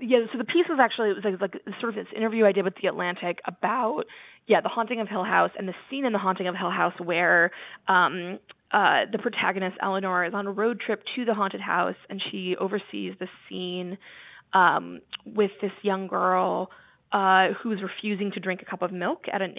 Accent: American